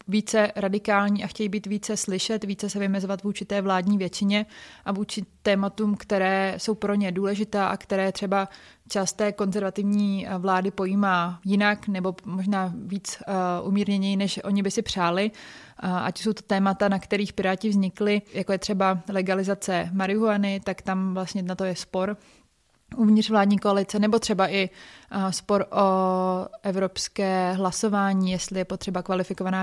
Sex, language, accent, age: female, Czech, native, 20-39